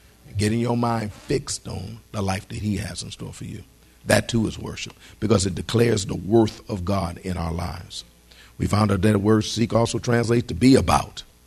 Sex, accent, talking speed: male, American, 210 wpm